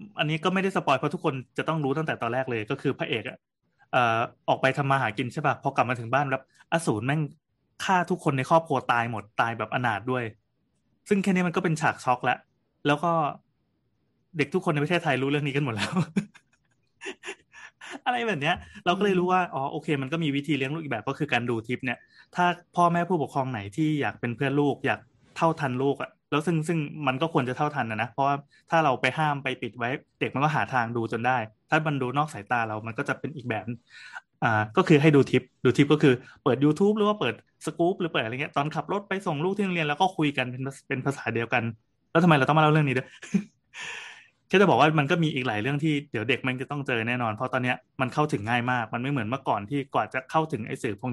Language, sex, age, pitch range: Thai, male, 20-39, 125-160 Hz